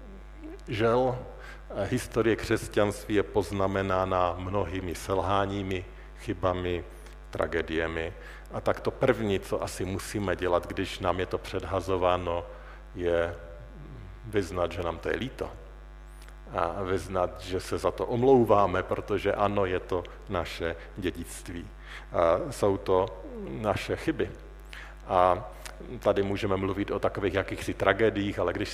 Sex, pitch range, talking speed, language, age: male, 90-105 Hz, 115 wpm, Slovak, 50-69